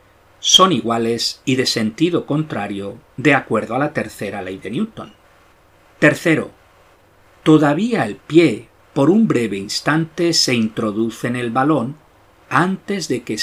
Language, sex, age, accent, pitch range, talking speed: Spanish, male, 50-69, Spanish, 110-160 Hz, 135 wpm